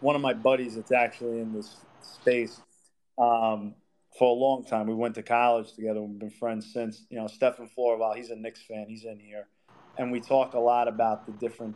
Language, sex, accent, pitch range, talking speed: English, male, American, 110-130 Hz, 215 wpm